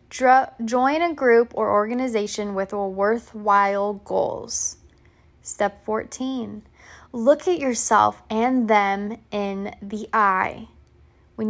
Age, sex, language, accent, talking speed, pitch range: 20-39, female, English, American, 100 wpm, 205-250 Hz